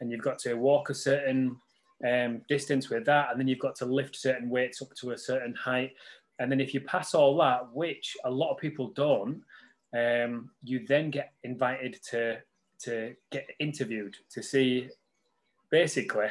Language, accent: English, British